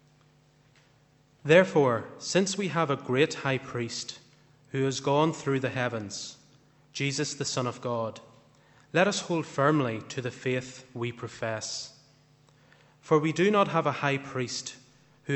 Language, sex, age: English, male, 30-49